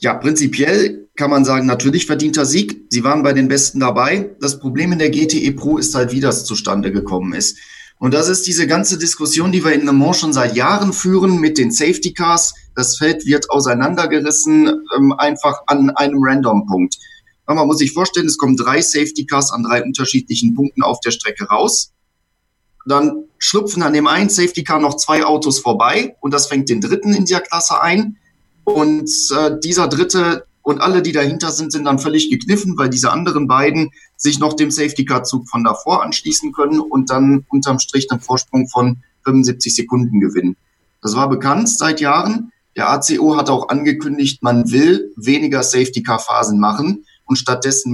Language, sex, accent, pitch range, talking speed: German, male, German, 125-165 Hz, 180 wpm